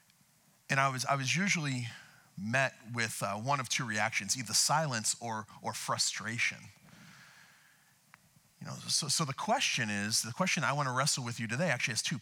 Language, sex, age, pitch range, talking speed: English, male, 40-59, 115-165 Hz, 175 wpm